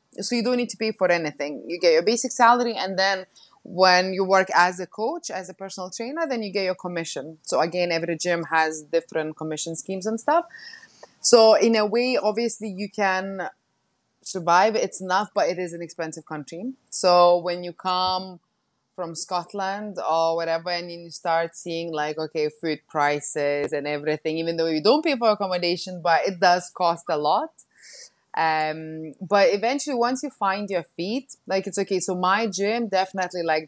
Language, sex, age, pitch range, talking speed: English, female, 20-39, 160-200 Hz, 185 wpm